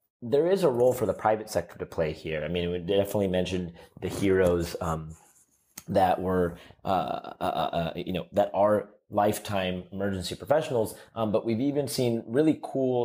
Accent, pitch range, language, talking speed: American, 85-100 Hz, English, 175 wpm